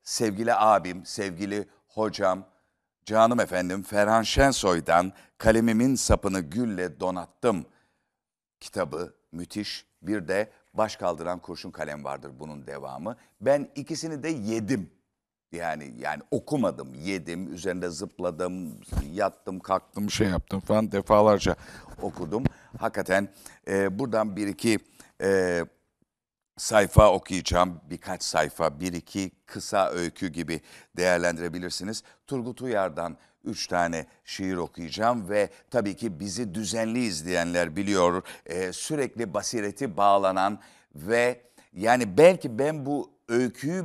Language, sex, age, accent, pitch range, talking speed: Turkish, male, 60-79, native, 90-115 Hz, 110 wpm